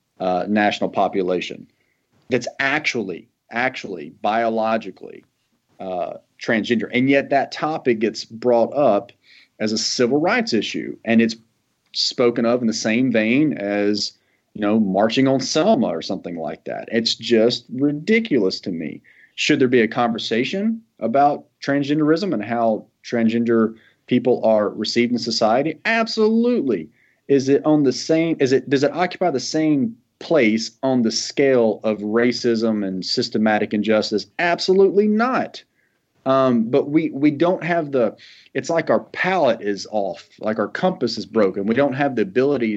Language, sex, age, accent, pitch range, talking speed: English, male, 40-59, American, 105-140 Hz, 155 wpm